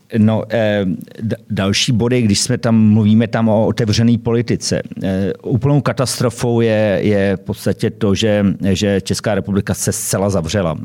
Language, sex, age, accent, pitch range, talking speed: Czech, male, 50-69, native, 100-115 Hz, 150 wpm